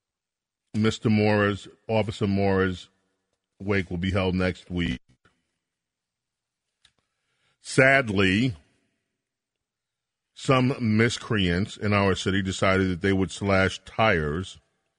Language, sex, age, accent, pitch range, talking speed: English, male, 40-59, American, 90-105 Hz, 90 wpm